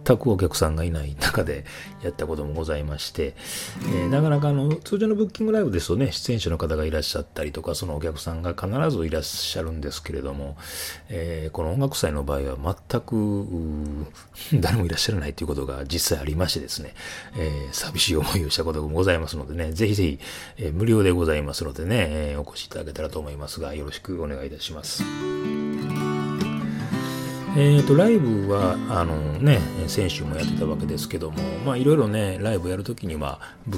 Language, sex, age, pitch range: Japanese, male, 30-49, 75-100 Hz